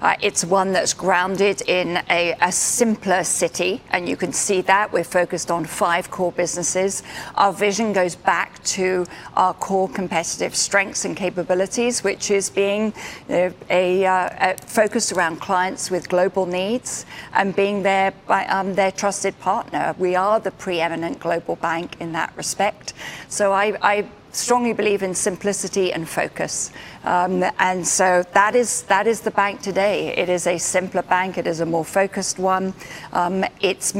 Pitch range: 180-200 Hz